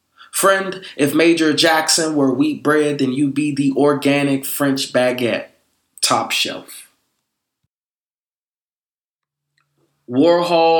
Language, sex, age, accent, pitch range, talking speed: English, male, 20-39, American, 140-180 Hz, 95 wpm